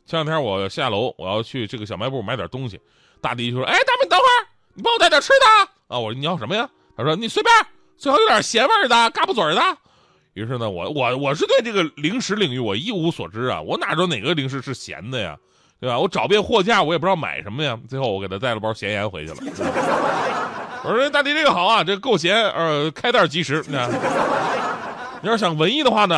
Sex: male